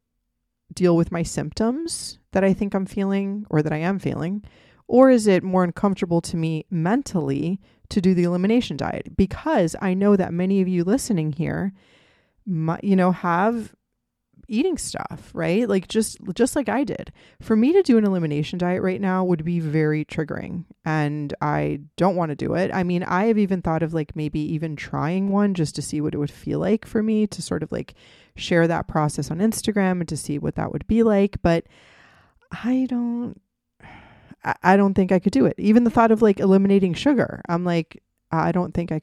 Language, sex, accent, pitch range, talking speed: English, female, American, 160-200 Hz, 200 wpm